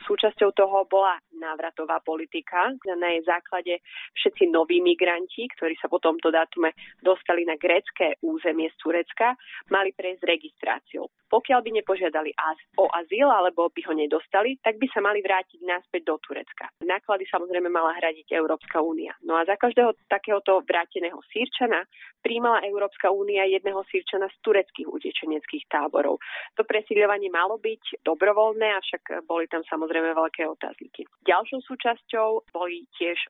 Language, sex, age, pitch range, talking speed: Slovak, female, 30-49, 170-205 Hz, 140 wpm